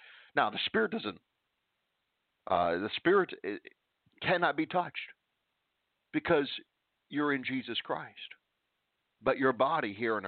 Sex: male